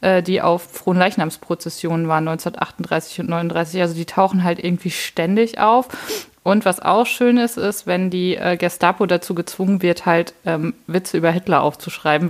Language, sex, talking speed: German, female, 160 wpm